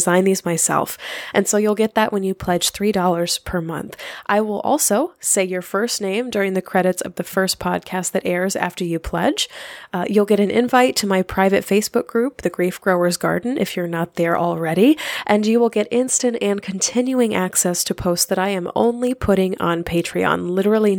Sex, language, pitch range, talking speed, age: female, English, 180-230 Hz, 200 wpm, 20-39